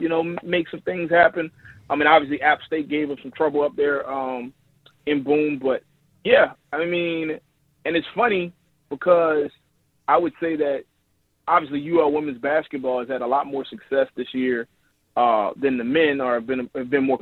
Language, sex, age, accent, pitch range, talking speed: English, male, 30-49, American, 130-160 Hz, 190 wpm